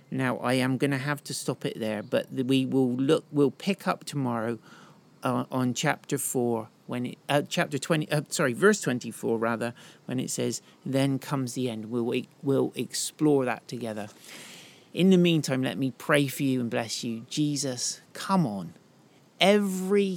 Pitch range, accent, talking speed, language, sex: 115-145 Hz, British, 175 wpm, English, male